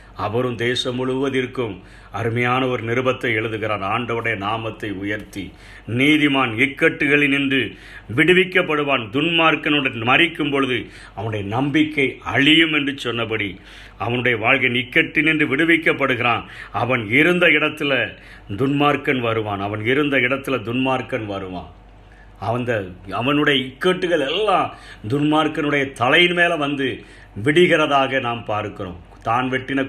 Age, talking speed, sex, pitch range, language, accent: 50-69, 100 wpm, male, 105-135 Hz, Tamil, native